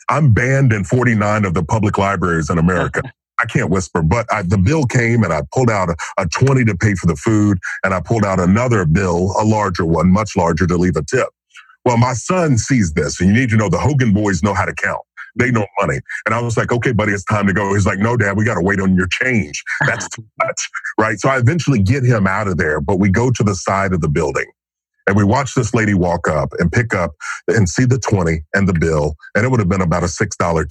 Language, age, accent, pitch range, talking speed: English, 40-59, American, 95-115 Hz, 255 wpm